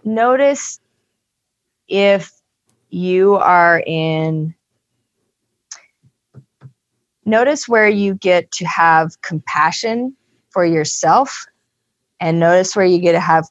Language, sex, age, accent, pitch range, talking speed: English, female, 30-49, American, 155-190 Hz, 95 wpm